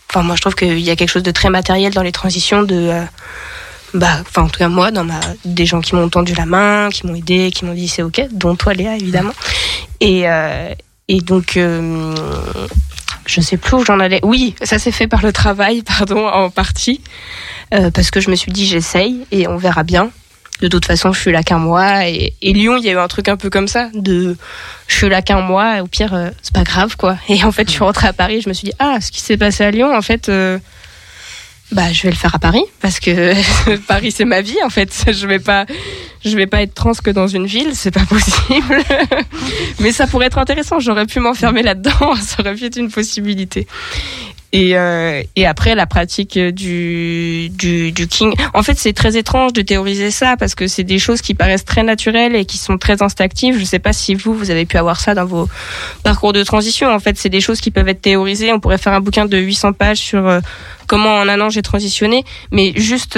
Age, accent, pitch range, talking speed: 20-39, French, 180-215 Hz, 240 wpm